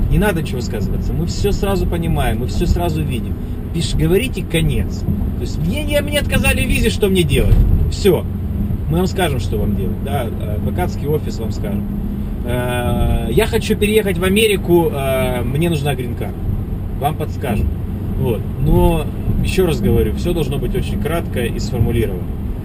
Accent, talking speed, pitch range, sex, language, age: native, 155 wpm, 95-120 Hz, male, Russian, 20-39